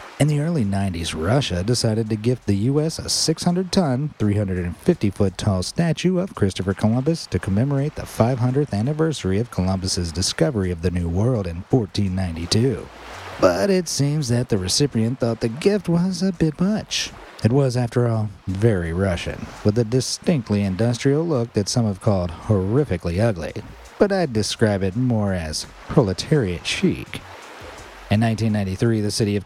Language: English